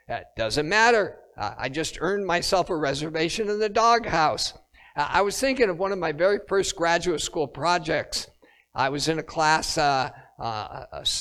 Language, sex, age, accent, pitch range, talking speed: English, male, 50-69, American, 150-200 Hz, 170 wpm